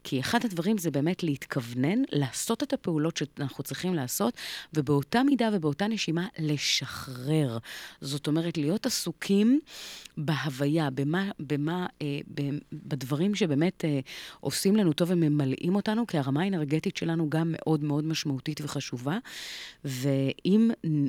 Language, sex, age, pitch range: Hebrew, female, 30-49, 140-175 Hz